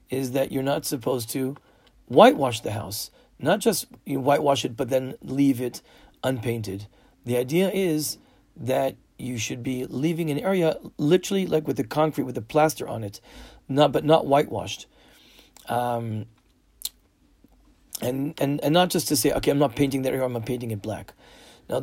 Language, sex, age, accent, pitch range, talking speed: English, male, 40-59, American, 130-170 Hz, 175 wpm